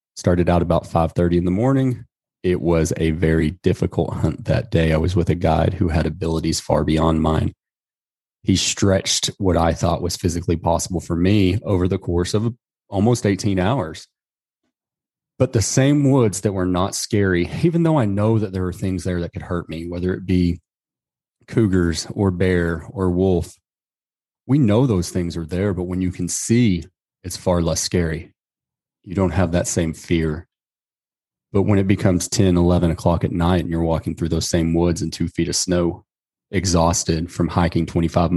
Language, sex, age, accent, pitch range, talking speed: English, male, 30-49, American, 85-95 Hz, 185 wpm